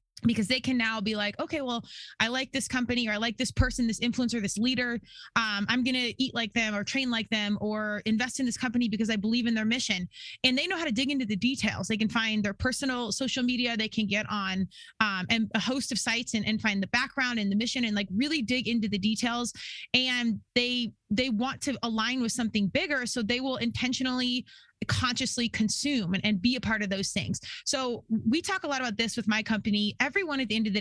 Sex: female